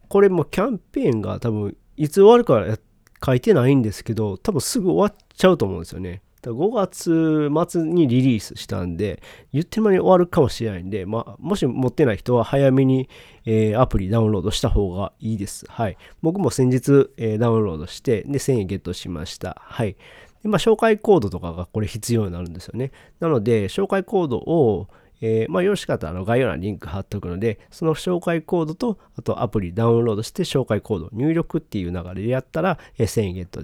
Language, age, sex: Japanese, 40-59, male